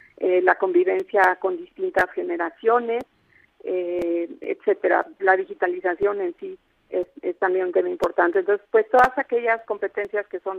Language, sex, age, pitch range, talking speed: Spanish, female, 50-69, 190-235 Hz, 140 wpm